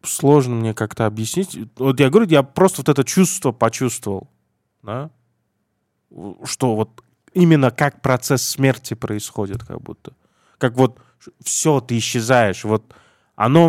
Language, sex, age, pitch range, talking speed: Russian, male, 20-39, 110-140 Hz, 130 wpm